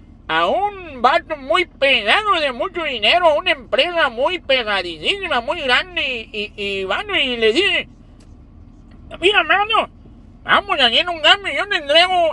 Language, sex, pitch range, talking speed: Spanish, male, 240-345 Hz, 155 wpm